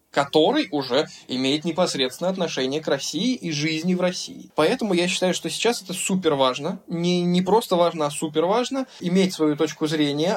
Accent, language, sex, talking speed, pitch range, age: native, Russian, male, 175 wpm, 150-190 Hz, 20-39